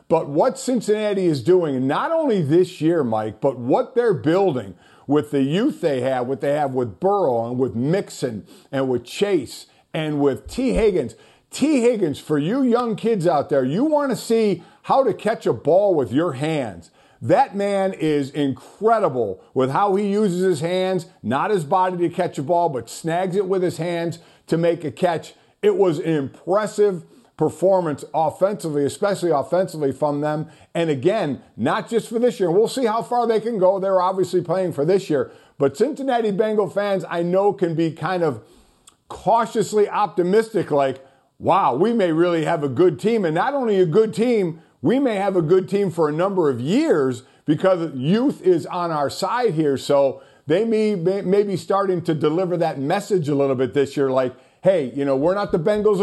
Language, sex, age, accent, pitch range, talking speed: English, male, 50-69, American, 150-205 Hz, 190 wpm